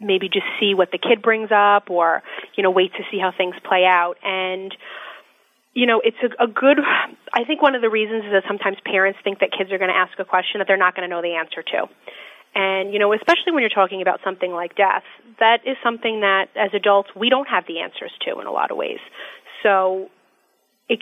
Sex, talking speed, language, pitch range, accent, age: female, 235 wpm, English, 185-235 Hz, American, 30-49